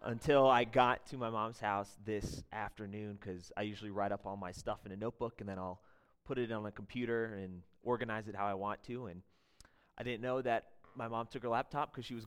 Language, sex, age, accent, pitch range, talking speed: English, male, 30-49, American, 105-135 Hz, 235 wpm